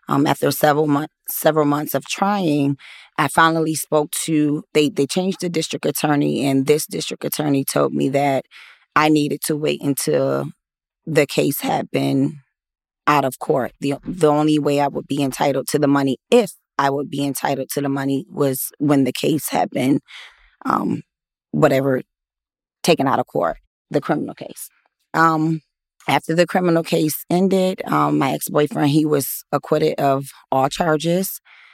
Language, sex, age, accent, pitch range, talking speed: English, female, 20-39, American, 135-155 Hz, 165 wpm